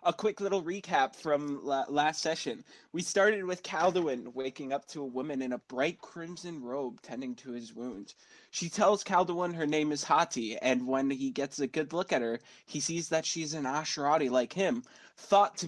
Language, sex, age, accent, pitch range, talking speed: English, male, 20-39, American, 130-160 Hz, 200 wpm